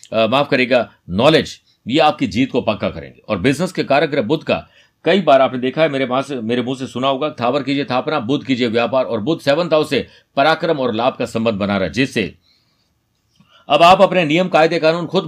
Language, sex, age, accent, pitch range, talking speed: Hindi, male, 50-69, native, 105-155 Hz, 170 wpm